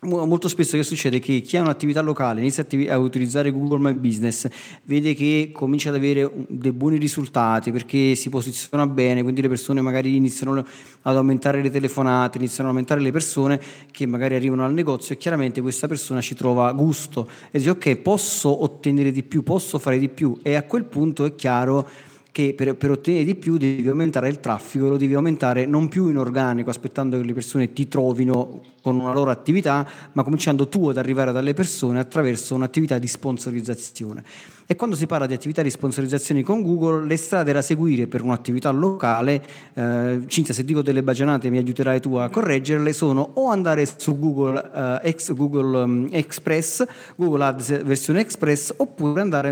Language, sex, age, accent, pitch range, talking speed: Italian, male, 30-49, native, 130-150 Hz, 185 wpm